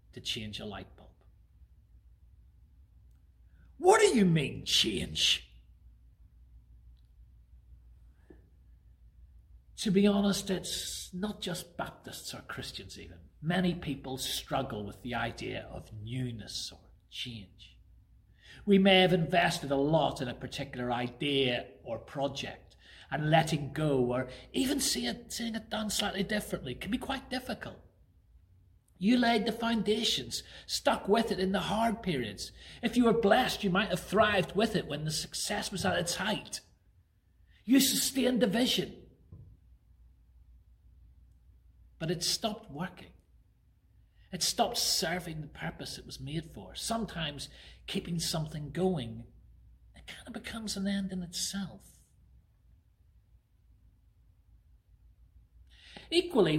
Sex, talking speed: male, 125 wpm